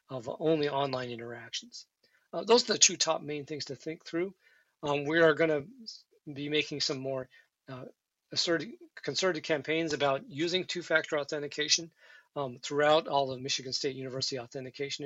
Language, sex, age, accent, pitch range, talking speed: English, male, 40-59, American, 135-160 Hz, 150 wpm